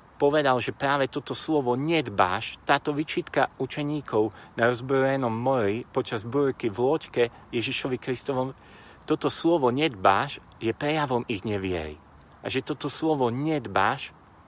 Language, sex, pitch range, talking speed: Slovak, male, 110-140 Hz, 125 wpm